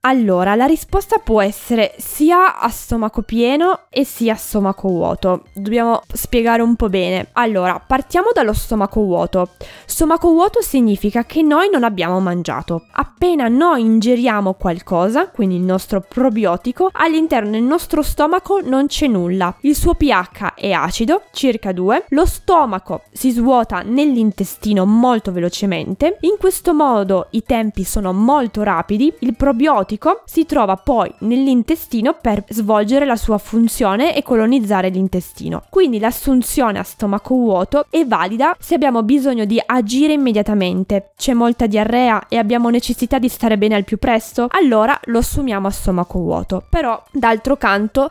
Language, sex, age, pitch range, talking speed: Italian, female, 20-39, 205-280 Hz, 145 wpm